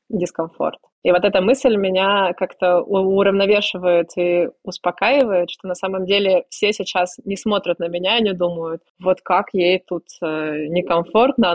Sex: female